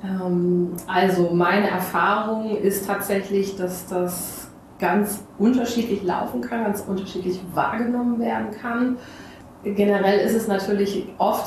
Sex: female